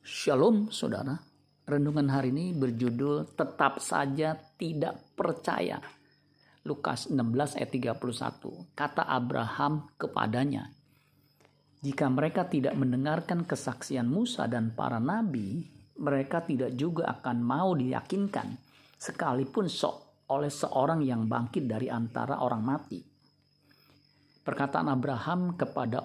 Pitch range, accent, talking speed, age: 120-145 Hz, native, 105 wpm, 50-69